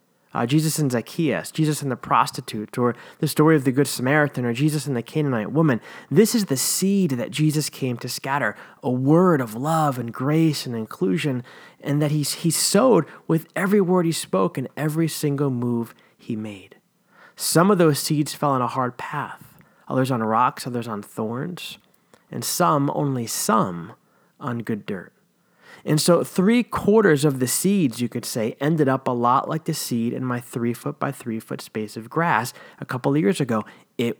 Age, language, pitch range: 30-49, English, 125-160 Hz